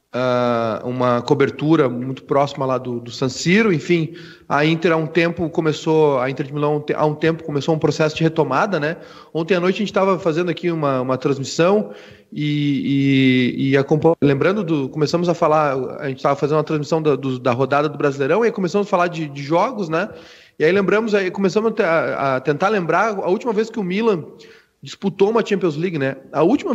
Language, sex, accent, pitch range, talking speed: Portuguese, male, Brazilian, 145-185 Hz, 205 wpm